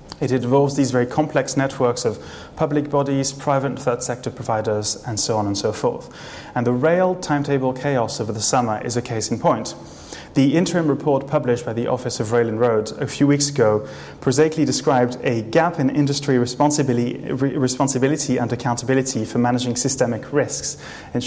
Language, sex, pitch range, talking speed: English, male, 120-145 Hz, 170 wpm